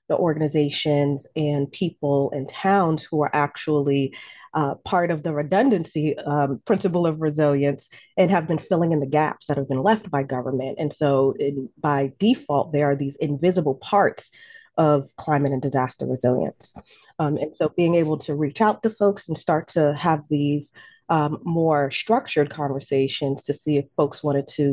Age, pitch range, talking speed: 30-49, 140-165 Hz, 165 wpm